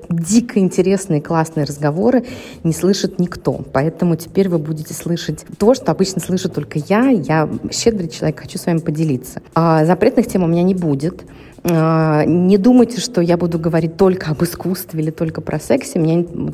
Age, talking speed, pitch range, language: 30-49, 170 wpm, 155-190 Hz, Russian